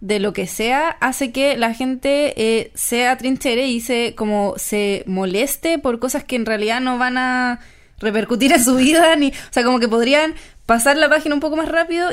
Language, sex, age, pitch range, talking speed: Spanish, female, 20-39, 225-285 Hz, 205 wpm